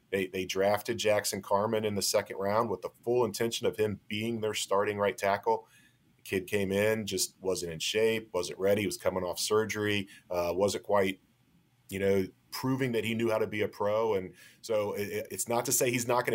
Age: 30-49